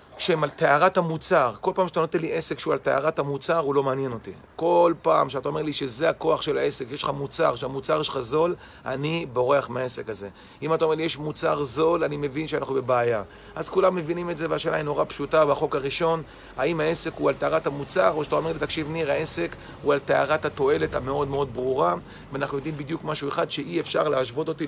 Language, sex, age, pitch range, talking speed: Hebrew, male, 40-59, 140-170 Hz, 210 wpm